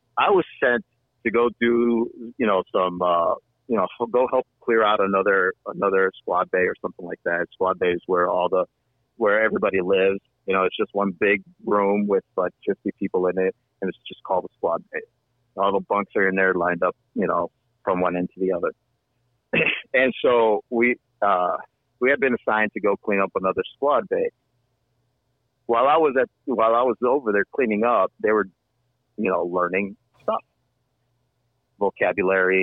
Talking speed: 185 wpm